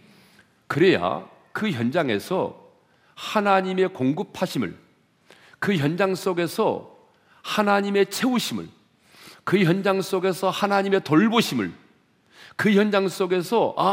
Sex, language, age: male, Korean, 40-59